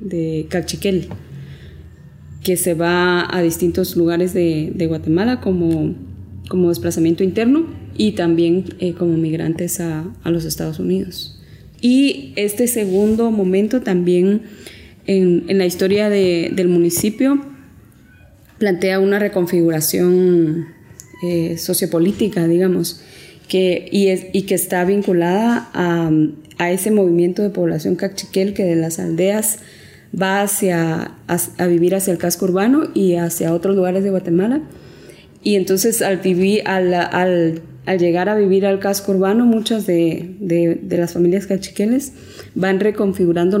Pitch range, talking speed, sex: 170-195 Hz, 130 wpm, female